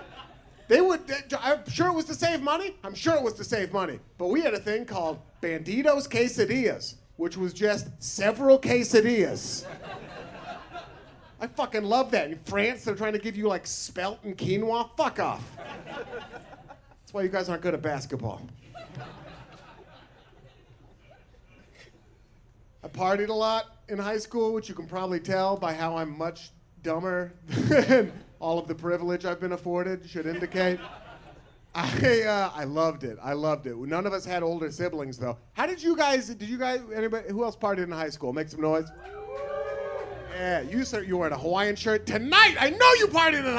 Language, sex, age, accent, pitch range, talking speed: English, male, 40-59, American, 160-255 Hz, 175 wpm